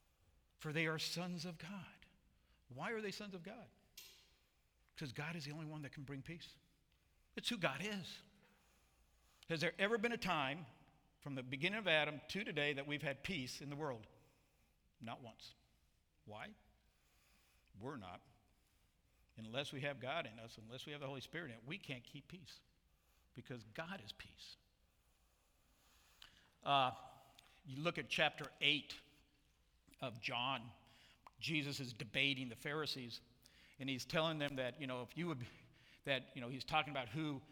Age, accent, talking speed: 60-79, American, 165 wpm